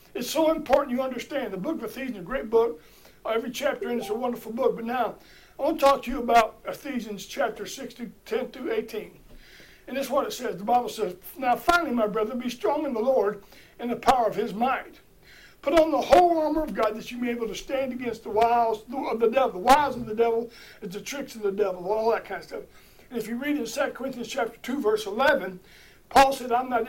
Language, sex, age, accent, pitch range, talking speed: English, male, 60-79, American, 225-290 Hz, 250 wpm